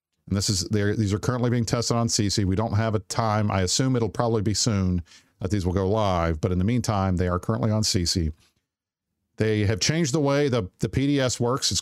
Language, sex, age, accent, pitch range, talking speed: English, male, 50-69, American, 95-120 Hz, 230 wpm